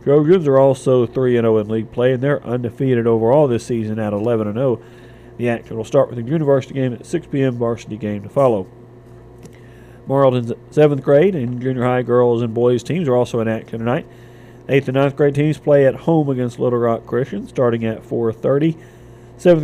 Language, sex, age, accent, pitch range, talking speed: English, male, 40-59, American, 115-130 Hz, 185 wpm